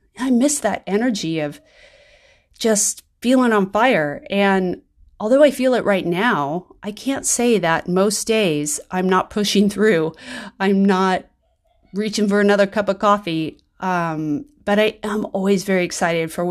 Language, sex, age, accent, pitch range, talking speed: English, female, 30-49, American, 155-200 Hz, 155 wpm